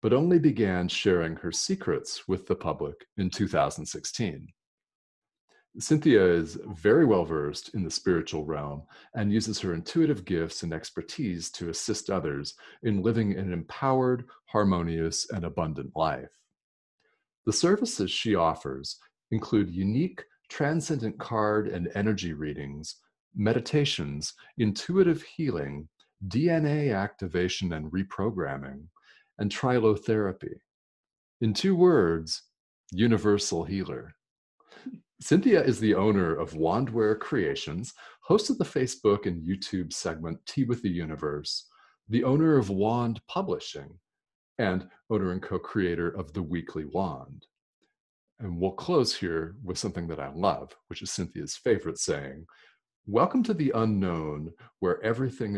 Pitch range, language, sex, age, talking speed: 85-120 Hz, English, male, 40-59, 120 wpm